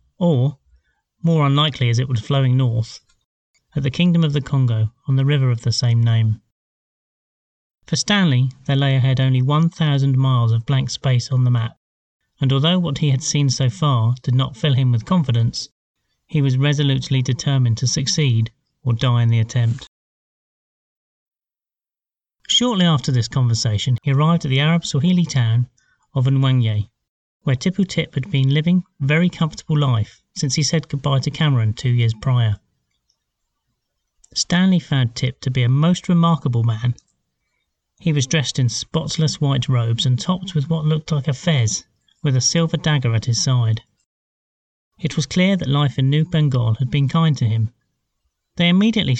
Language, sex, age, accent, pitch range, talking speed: English, male, 30-49, British, 120-155 Hz, 170 wpm